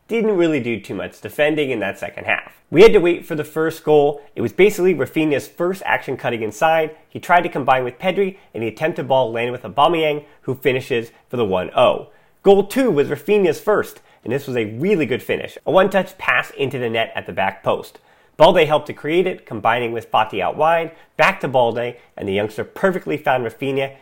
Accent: American